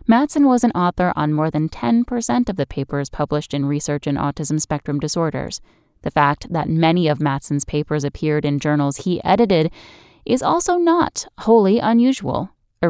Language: English